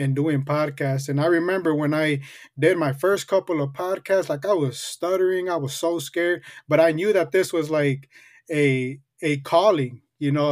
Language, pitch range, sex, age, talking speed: English, 140-165 Hz, male, 20-39, 195 wpm